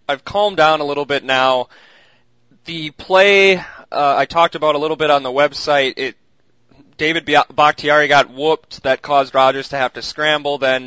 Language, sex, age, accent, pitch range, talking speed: English, male, 20-39, American, 130-150 Hz, 175 wpm